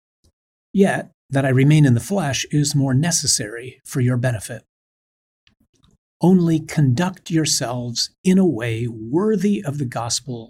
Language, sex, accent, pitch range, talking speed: English, male, American, 115-140 Hz, 130 wpm